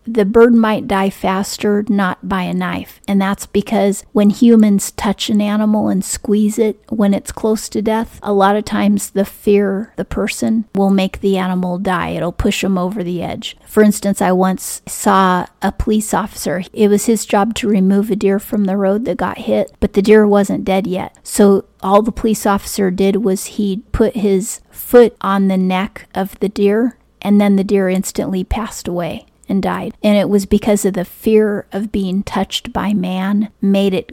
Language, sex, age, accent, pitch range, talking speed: English, female, 40-59, American, 190-210 Hz, 195 wpm